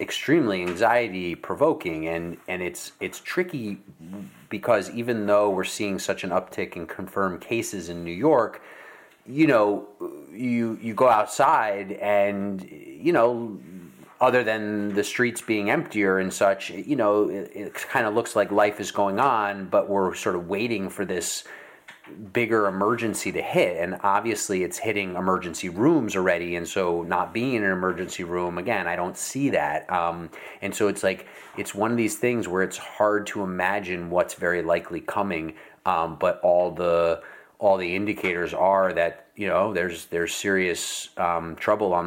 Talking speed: 170 wpm